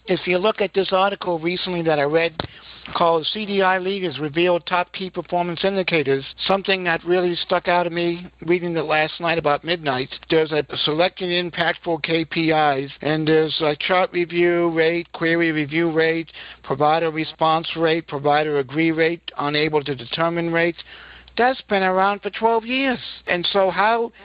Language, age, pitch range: English, 60-79, 140-180 Hz